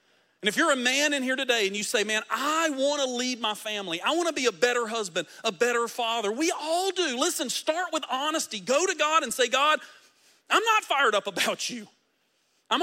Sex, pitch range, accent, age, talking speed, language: male, 220-310 Hz, American, 40-59, 225 wpm, English